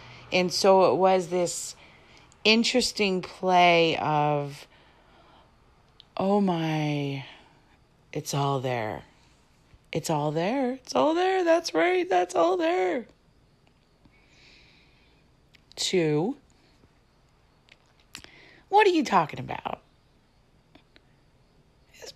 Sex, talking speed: female, 85 wpm